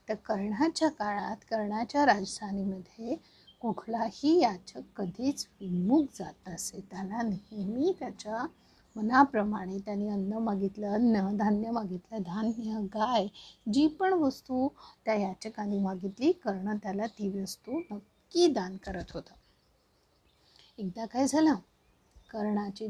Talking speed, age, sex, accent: 115 wpm, 50-69, female, native